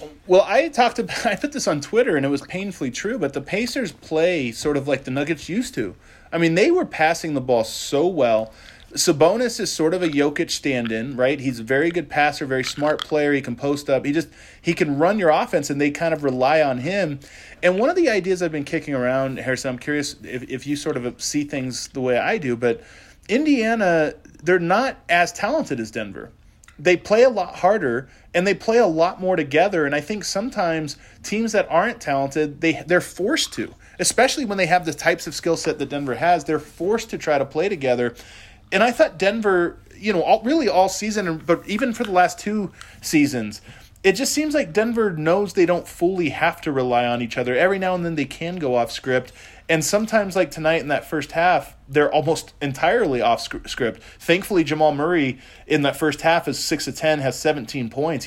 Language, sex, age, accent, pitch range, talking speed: English, male, 30-49, American, 135-185 Hz, 215 wpm